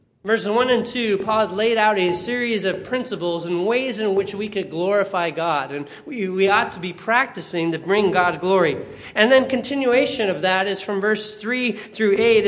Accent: American